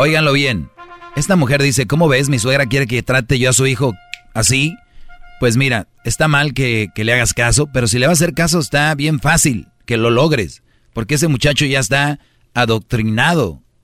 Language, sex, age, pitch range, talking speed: Spanish, male, 40-59, 120-155 Hz, 195 wpm